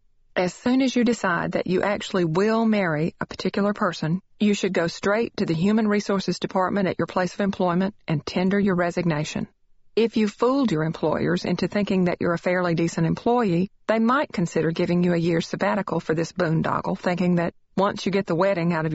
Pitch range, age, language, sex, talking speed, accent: 170-205 Hz, 40-59, English, female, 205 wpm, American